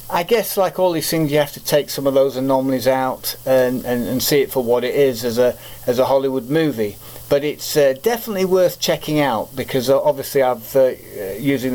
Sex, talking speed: male, 215 wpm